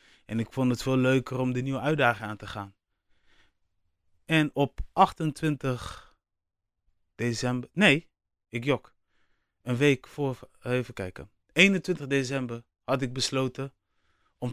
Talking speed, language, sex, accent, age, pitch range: 130 wpm, Dutch, male, Dutch, 20-39, 100-125 Hz